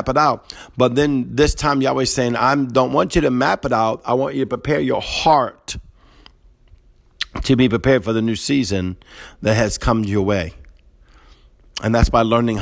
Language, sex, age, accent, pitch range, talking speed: English, male, 50-69, American, 90-120 Hz, 190 wpm